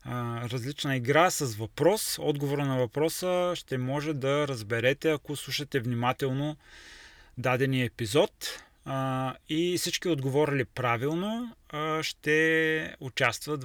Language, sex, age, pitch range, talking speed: Bulgarian, male, 20-39, 120-150 Hz, 95 wpm